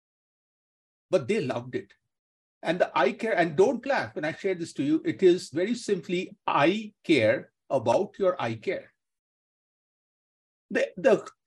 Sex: male